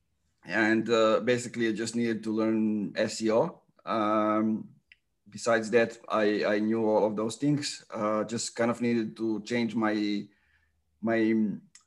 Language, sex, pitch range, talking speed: English, male, 110-120 Hz, 140 wpm